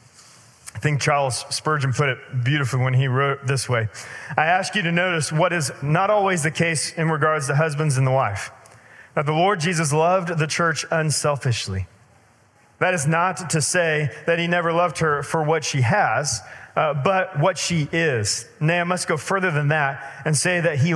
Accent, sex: American, male